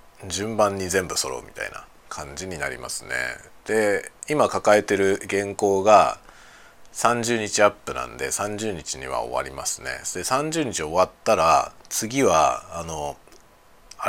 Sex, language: male, Japanese